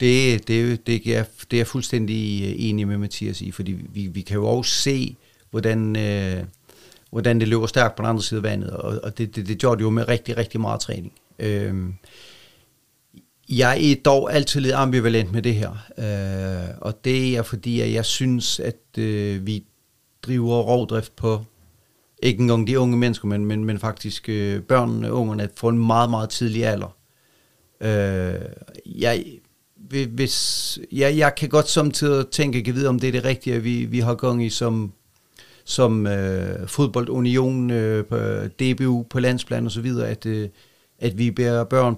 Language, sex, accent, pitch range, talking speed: Danish, male, native, 105-125 Hz, 180 wpm